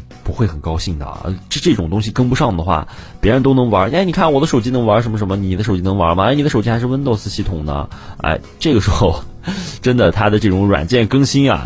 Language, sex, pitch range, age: Chinese, male, 85-115 Hz, 30-49